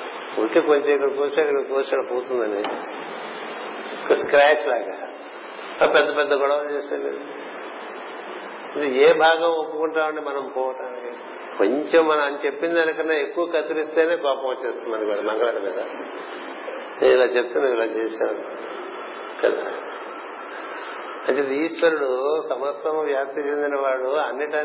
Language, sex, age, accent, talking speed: Telugu, male, 50-69, native, 90 wpm